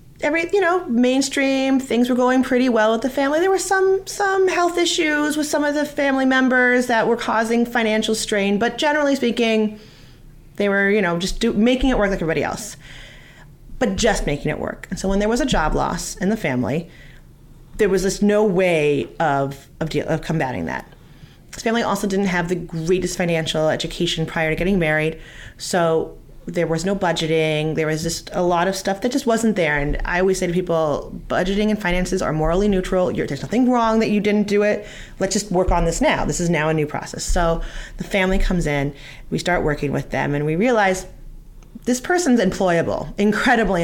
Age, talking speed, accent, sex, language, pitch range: 30-49, 205 wpm, American, female, English, 160-230 Hz